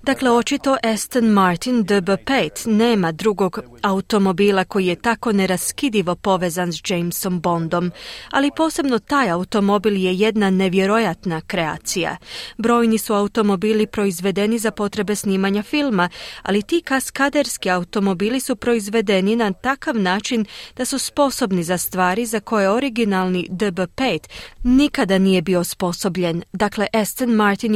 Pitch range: 185-240 Hz